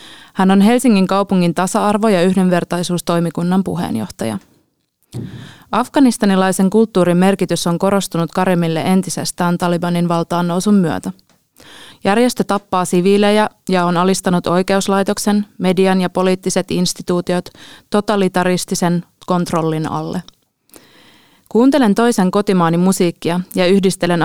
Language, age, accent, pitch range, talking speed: Finnish, 20-39, native, 175-200 Hz, 95 wpm